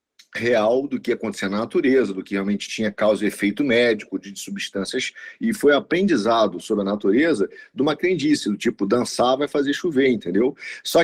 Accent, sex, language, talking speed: Brazilian, male, Portuguese, 180 wpm